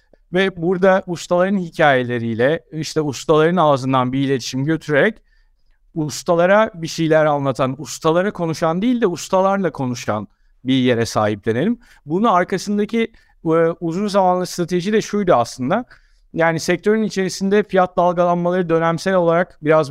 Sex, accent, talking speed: male, native, 120 wpm